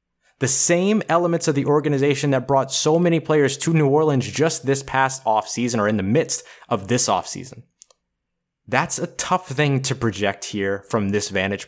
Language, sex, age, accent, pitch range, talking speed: English, male, 20-39, American, 125-155 Hz, 180 wpm